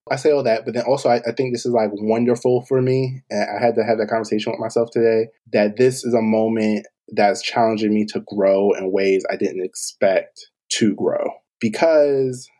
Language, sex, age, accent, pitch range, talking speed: English, male, 20-39, American, 110-130 Hz, 210 wpm